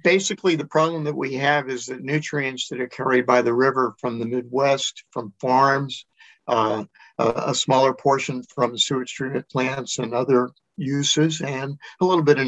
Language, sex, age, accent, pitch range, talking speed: English, male, 50-69, American, 125-145 Hz, 180 wpm